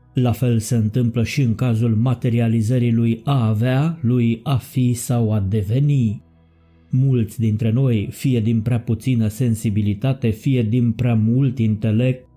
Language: Romanian